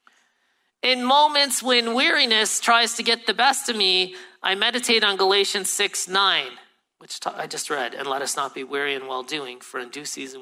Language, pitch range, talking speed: English, 145-205 Hz, 195 wpm